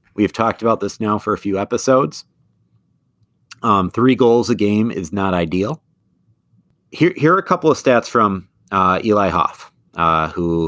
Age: 30-49